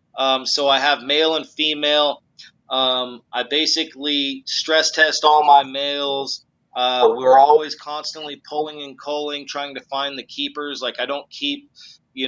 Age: 30-49